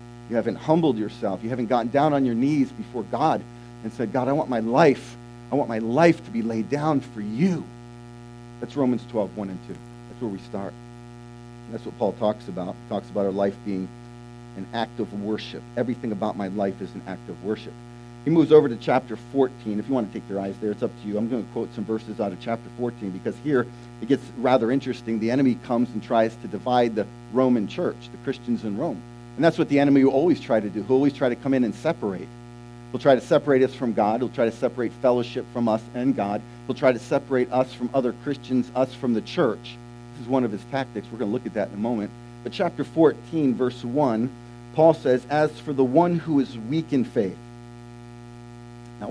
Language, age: English, 50-69